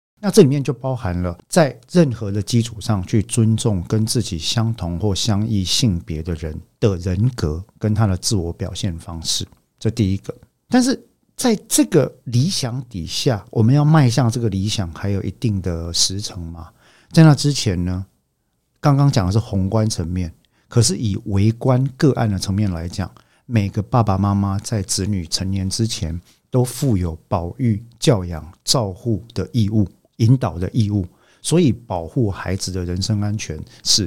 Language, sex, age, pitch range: Chinese, male, 50-69, 95-120 Hz